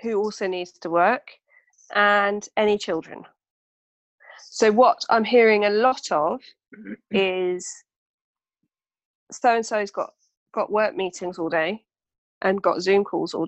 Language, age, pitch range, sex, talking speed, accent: English, 40-59, 195-240 Hz, female, 135 wpm, British